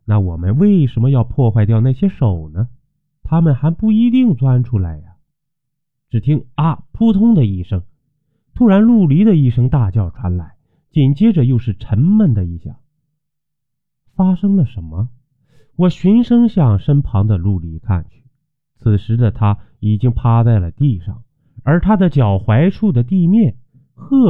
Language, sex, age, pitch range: Chinese, male, 30-49, 105-155 Hz